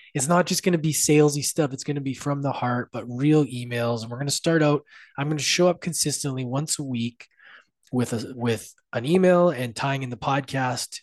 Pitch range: 115-150 Hz